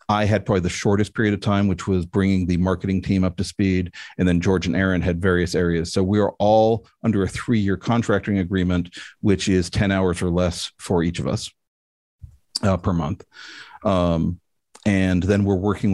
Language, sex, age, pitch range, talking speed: English, male, 40-59, 90-105 Hz, 195 wpm